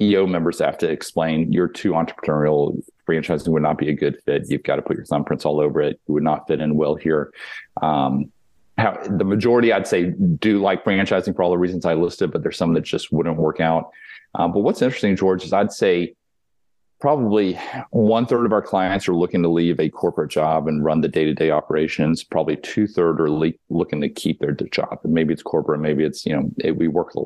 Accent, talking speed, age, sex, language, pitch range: American, 225 wpm, 40-59, male, English, 80-95 Hz